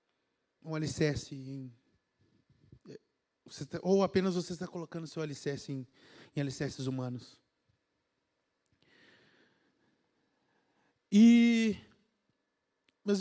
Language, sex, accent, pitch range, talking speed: Portuguese, male, Brazilian, 185-250 Hz, 70 wpm